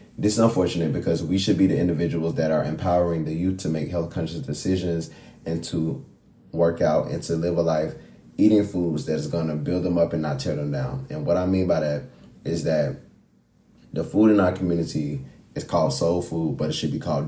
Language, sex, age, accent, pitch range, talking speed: English, male, 20-39, American, 80-90 Hz, 220 wpm